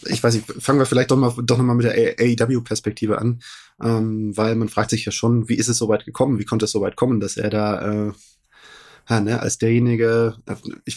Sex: male